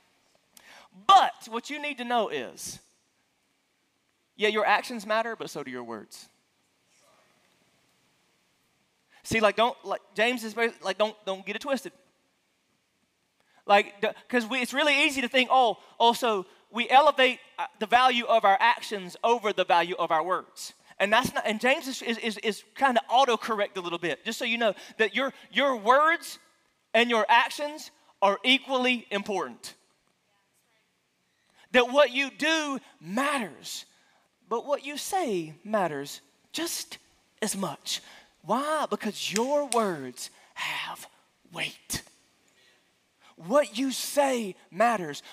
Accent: American